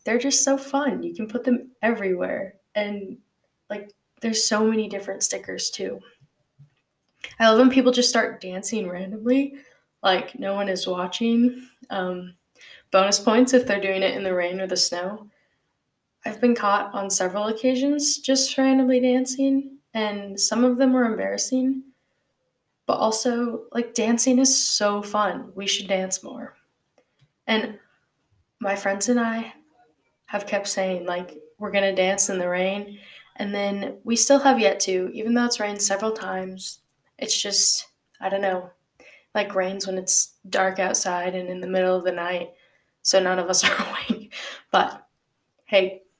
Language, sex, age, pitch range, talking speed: English, female, 10-29, 190-245 Hz, 160 wpm